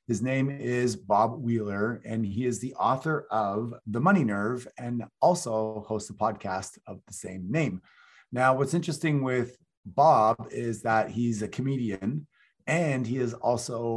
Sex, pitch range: male, 110-135 Hz